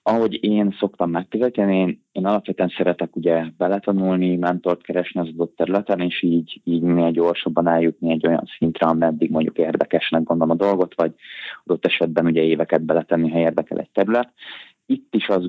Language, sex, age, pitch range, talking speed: Hungarian, male, 20-39, 85-95 Hz, 165 wpm